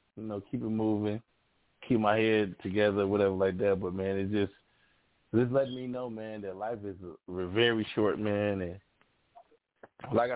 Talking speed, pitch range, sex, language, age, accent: 175 wpm, 105-130 Hz, male, English, 20-39, American